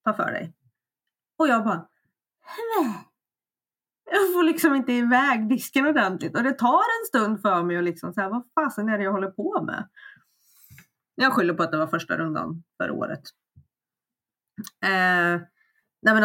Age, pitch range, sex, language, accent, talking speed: 20-39, 185-275 Hz, female, Swedish, native, 165 wpm